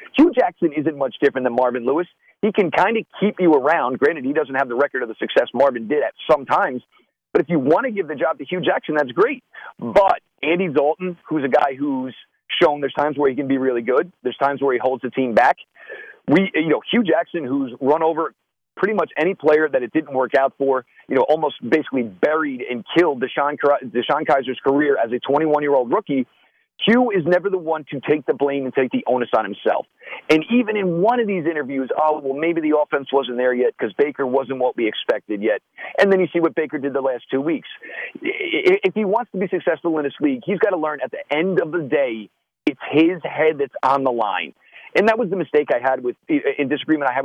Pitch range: 135-180 Hz